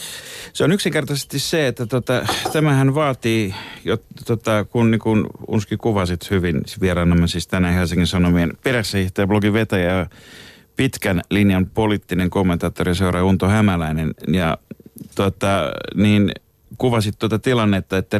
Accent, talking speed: native, 130 wpm